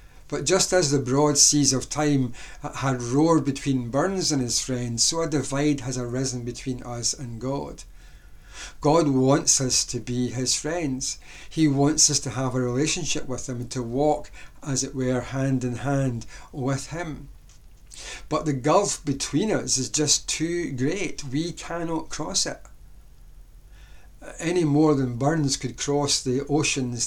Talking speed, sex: 160 wpm, male